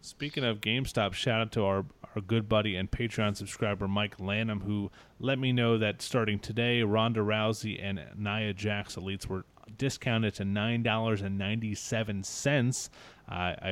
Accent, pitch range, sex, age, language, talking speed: American, 105-130 Hz, male, 30-49, English, 140 wpm